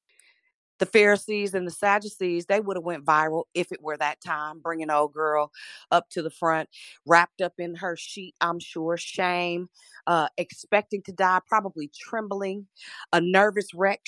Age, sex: 40-59, female